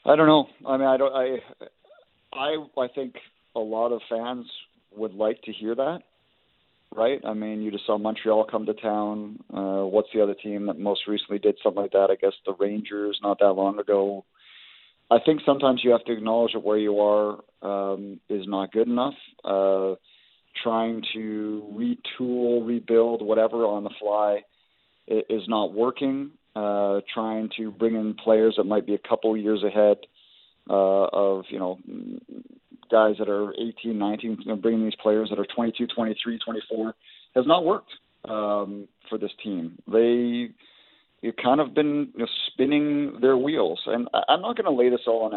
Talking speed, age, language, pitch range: 180 wpm, 40-59, English, 105-120 Hz